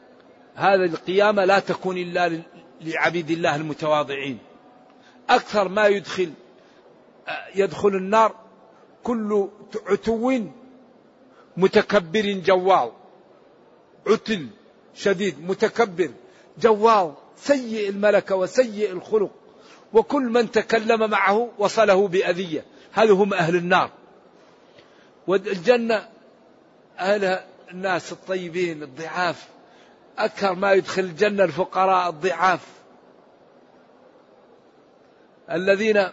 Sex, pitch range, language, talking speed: male, 175-210 Hz, English, 80 wpm